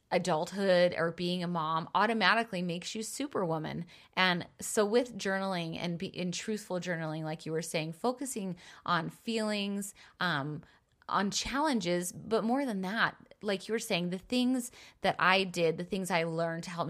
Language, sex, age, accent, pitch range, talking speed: English, female, 20-39, American, 160-195 Hz, 165 wpm